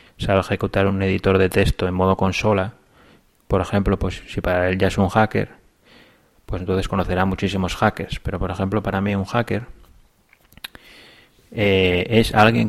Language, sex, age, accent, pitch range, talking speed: Spanish, male, 30-49, Spanish, 90-100 Hz, 165 wpm